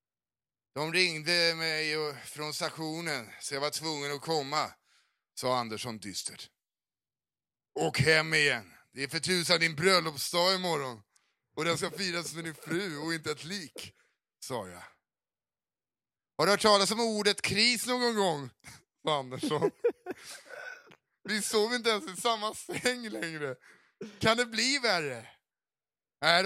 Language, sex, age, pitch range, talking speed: English, male, 30-49, 140-180 Hz, 135 wpm